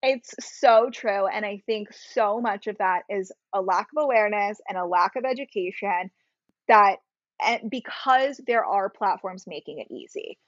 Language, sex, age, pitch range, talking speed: English, female, 20-39, 195-245 Hz, 165 wpm